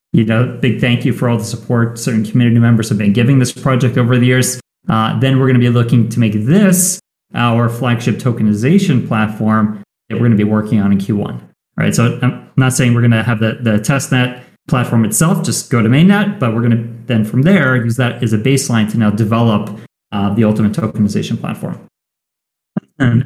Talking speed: 215 wpm